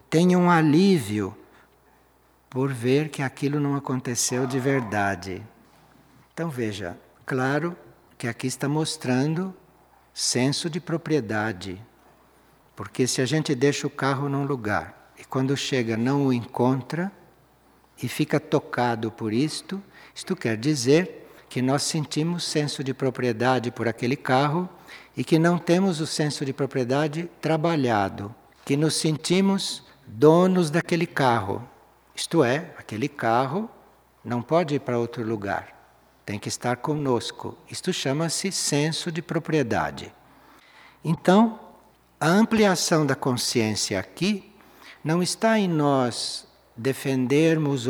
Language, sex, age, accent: Portuguese, male, 60-79, Brazilian